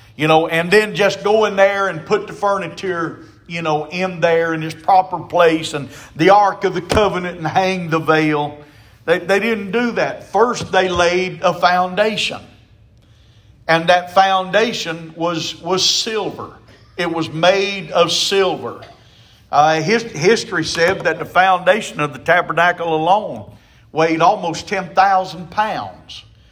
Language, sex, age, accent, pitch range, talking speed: English, male, 40-59, American, 160-195 Hz, 145 wpm